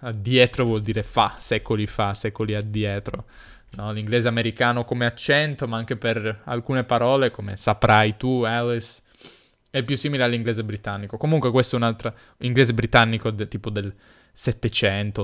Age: 20-39